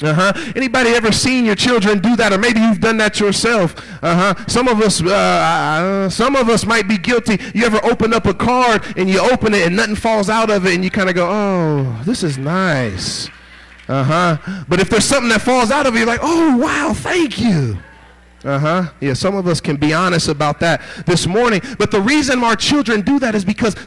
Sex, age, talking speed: male, 30-49, 230 wpm